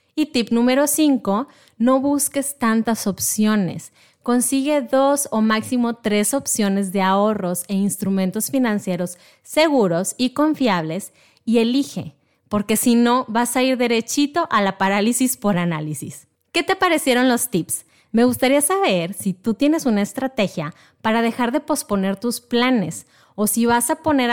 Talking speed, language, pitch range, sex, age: 150 wpm, Spanish, 200-270 Hz, female, 30-49